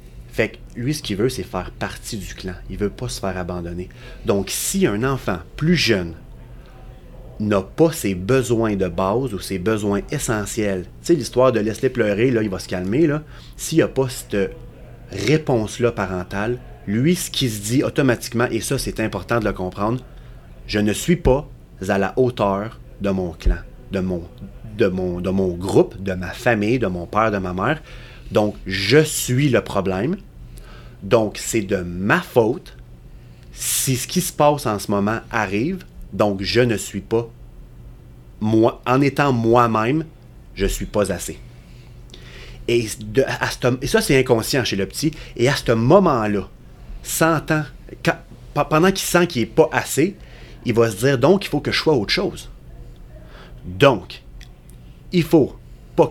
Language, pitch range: French, 95-130 Hz